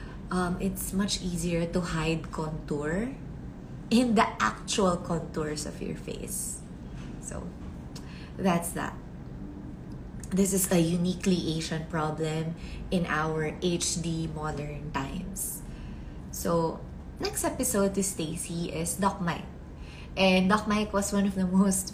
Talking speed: 120 wpm